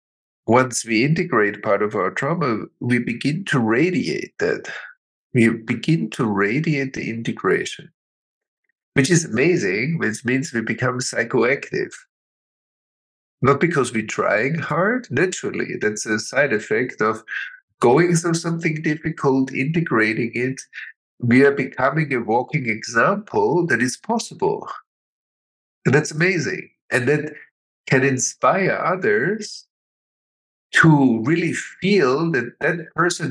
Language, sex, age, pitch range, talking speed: English, male, 50-69, 120-170 Hz, 120 wpm